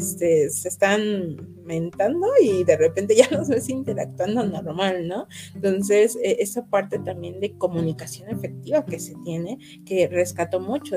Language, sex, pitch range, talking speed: Spanish, female, 165-195 Hz, 140 wpm